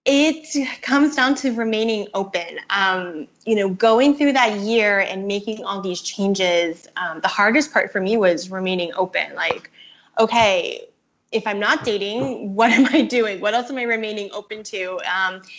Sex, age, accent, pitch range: female, 10-29, American, 195-240 Hz